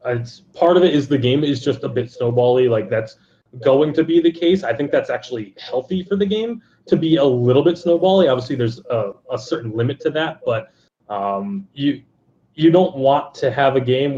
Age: 20-39